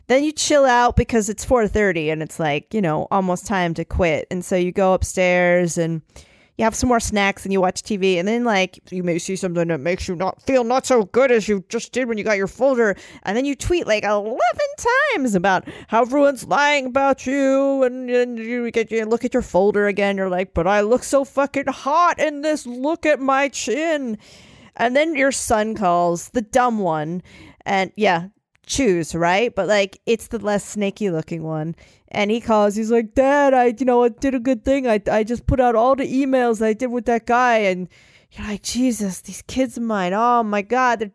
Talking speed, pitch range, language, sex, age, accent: 220 wpm, 195-275 Hz, English, female, 30-49, American